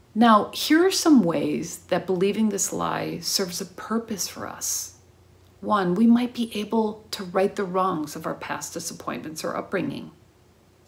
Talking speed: 160 wpm